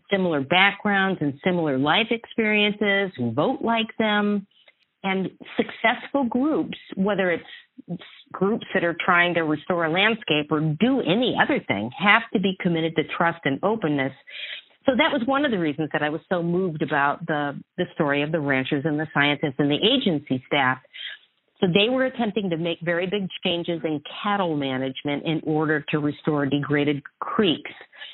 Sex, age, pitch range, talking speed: female, 50-69, 155-200 Hz, 170 wpm